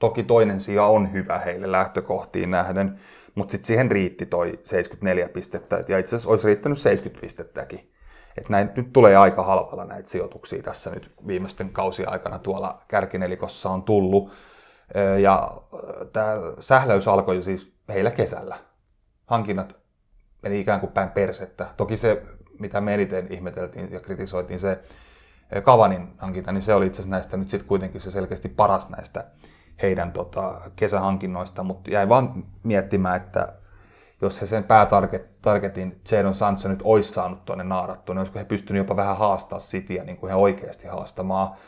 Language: Finnish